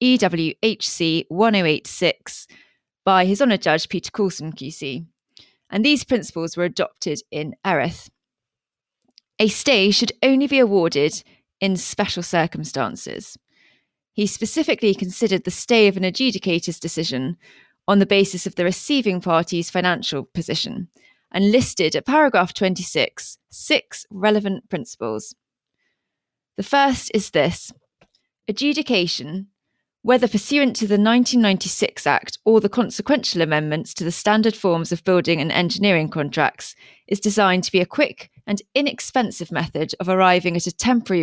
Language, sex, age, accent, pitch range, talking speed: English, female, 20-39, British, 170-215 Hz, 130 wpm